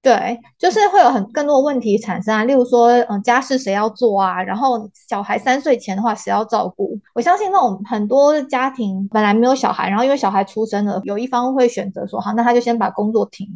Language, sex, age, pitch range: Chinese, female, 20-39, 210-260 Hz